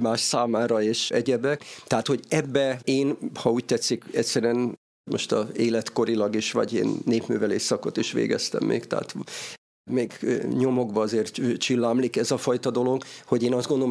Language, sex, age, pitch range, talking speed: Hungarian, male, 50-69, 110-130 Hz, 155 wpm